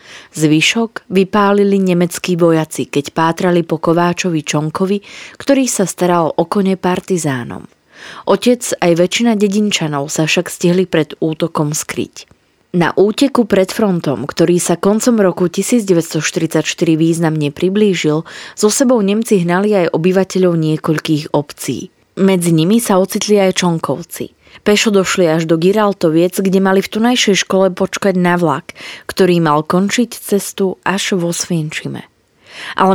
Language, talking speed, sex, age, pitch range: Slovak, 130 wpm, female, 20-39, 165-200 Hz